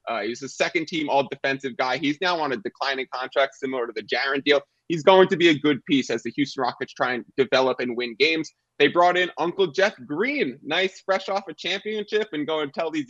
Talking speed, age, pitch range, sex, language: 240 wpm, 20-39, 140-180 Hz, male, English